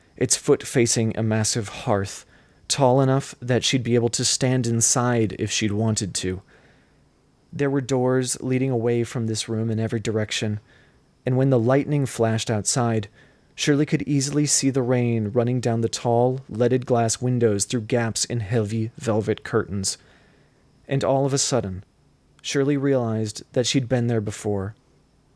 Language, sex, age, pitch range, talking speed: English, male, 30-49, 115-140 Hz, 160 wpm